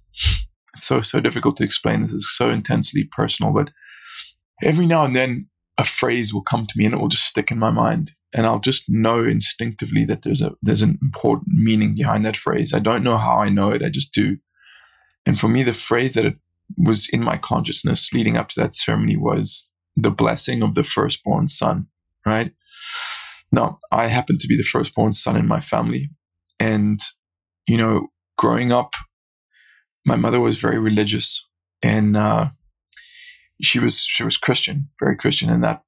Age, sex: 20-39, male